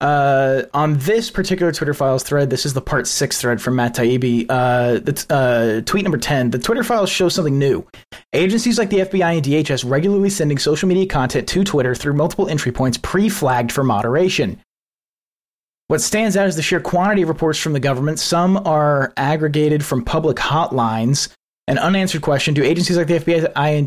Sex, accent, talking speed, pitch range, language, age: male, American, 190 wpm, 130-165 Hz, English, 30-49